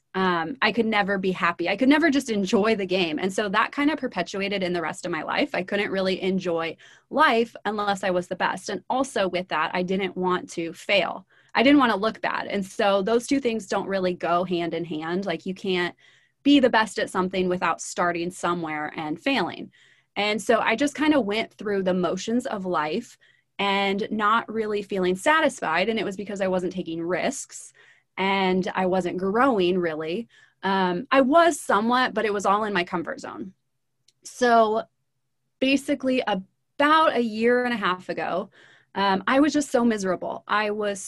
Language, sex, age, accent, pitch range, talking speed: English, female, 20-39, American, 180-225 Hz, 195 wpm